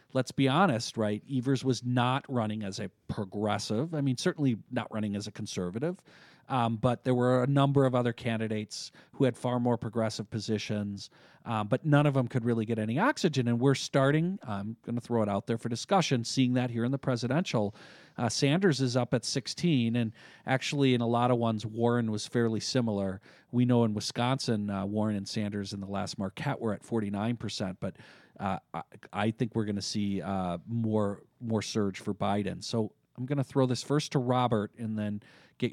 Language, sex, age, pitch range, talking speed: English, male, 40-59, 105-130 Hz, 200 wpm